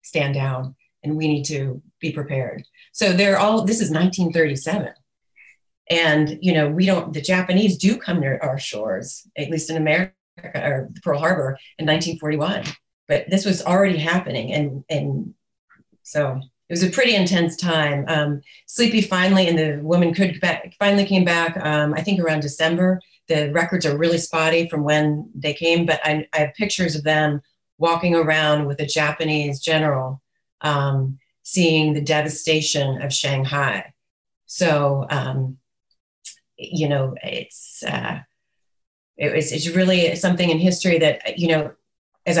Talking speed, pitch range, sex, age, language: 155 wpm, 145-170 Hz, female, 30-49, English